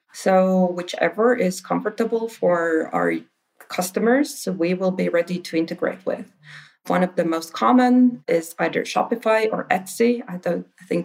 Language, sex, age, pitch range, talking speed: English, female, 30-49, 165-195 Hz, 145 wpm